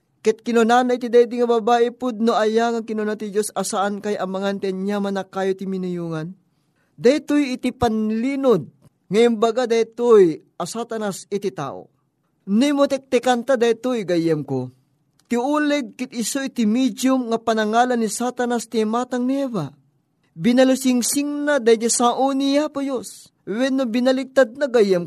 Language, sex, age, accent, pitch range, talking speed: Filipino, male, 20-39, native, 190-255 Hz, 135 wpm